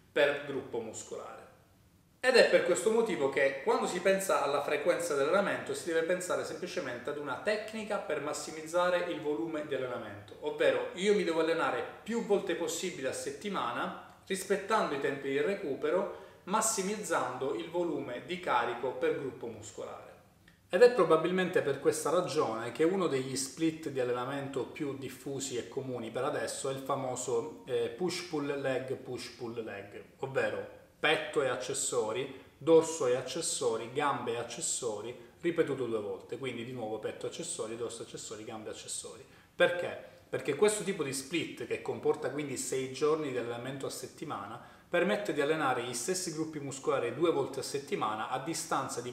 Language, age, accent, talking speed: Italian, 30-49, native, 160 wpm